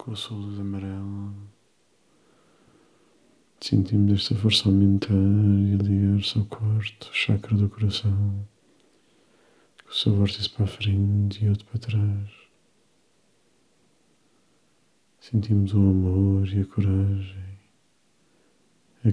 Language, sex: Portuguese, male